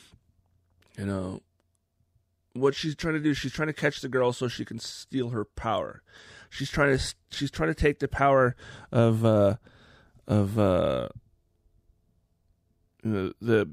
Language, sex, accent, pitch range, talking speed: English, male, American, 95-125 Hz, 140 wpm